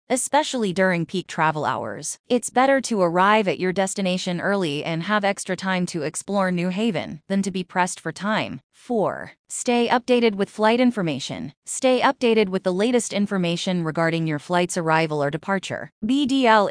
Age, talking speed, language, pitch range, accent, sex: 20-39, 165 wpm, English, 165-225 Hz, American, female